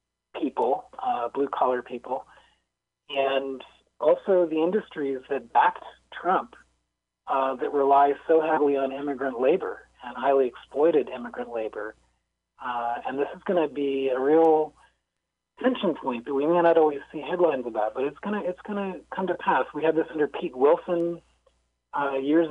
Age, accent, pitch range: 30-49, American, 120-150 Hz